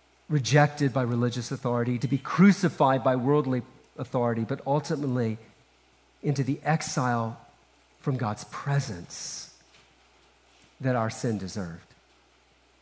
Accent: American